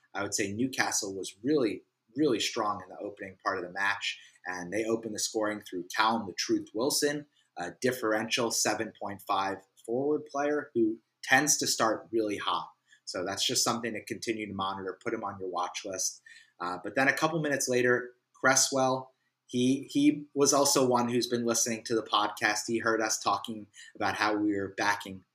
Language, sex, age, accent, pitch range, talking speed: English, male, 30-49, American, 105-135 Hz, 185 wpm